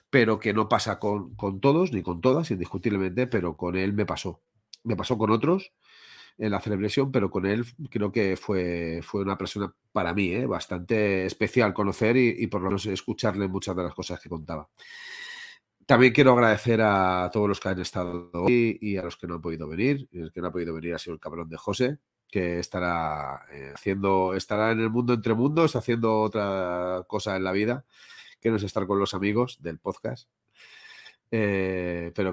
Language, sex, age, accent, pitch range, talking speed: Spanish, male, 30-49, Spanish, 90-110 Hz, 195 wpm